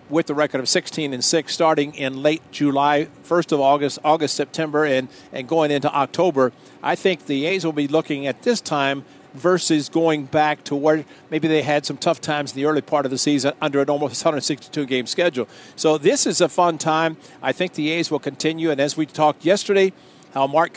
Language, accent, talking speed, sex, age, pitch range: English, American, 210 wpm, male, 50-69, 140-165 Hz